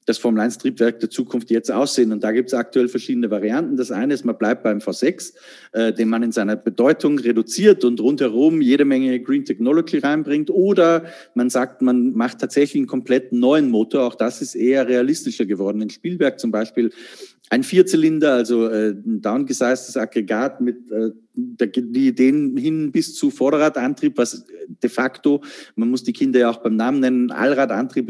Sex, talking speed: male, 175 wpm